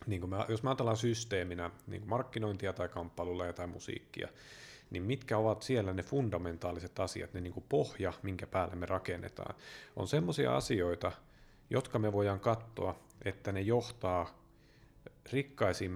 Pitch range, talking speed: 95-120 Hz, 140 wpm